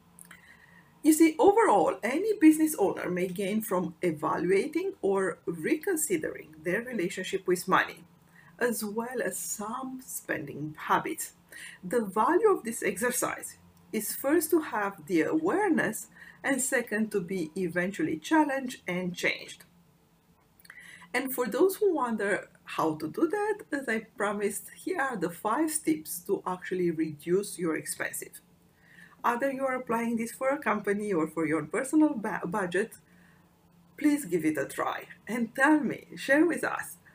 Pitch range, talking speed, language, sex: 180-295 Hz, 140 wpm, English, female